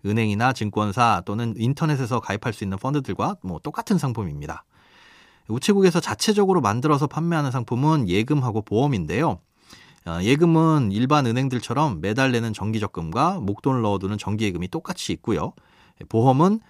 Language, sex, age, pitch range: Korean, male, 30-49, 105-150 Hz